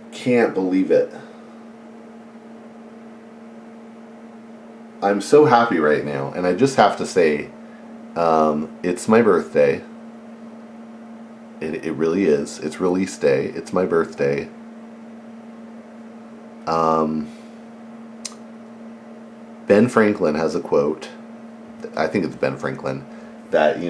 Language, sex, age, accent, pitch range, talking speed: English, male, 40-59, American, 220-230 Hz, 105 wpm